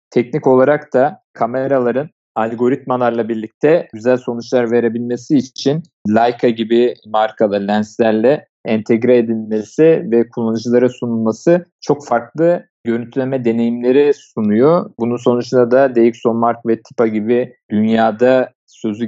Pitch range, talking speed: 115-145 Hz, 105 wpm